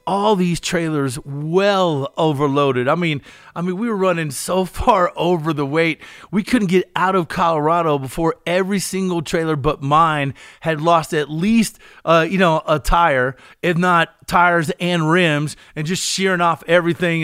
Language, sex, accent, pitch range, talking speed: English, male, American, 155-185 Hz, 165 wpm